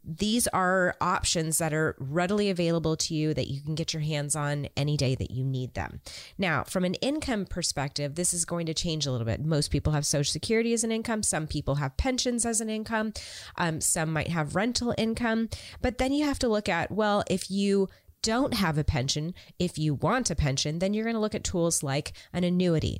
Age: 30-49